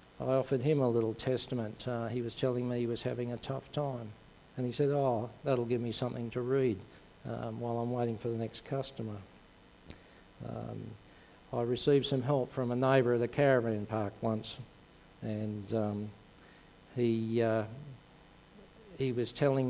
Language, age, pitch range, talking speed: English, 50-69, 115-135 Hz, 170 wpm